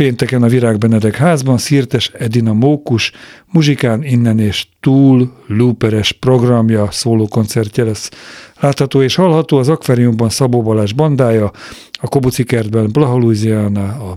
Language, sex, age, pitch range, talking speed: Hungarian, male, 50-69, 110-130 Hz, 115 wpm